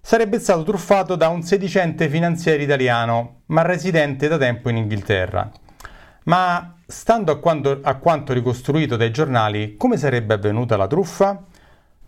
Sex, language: male, Italian